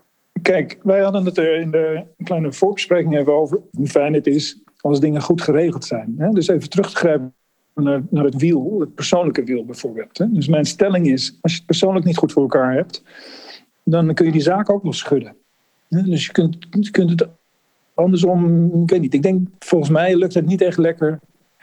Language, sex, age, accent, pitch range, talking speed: Dutch, male, 50-69, Dutch, 140-180 Hz, 195 wpm